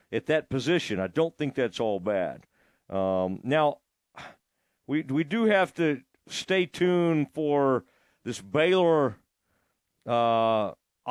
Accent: American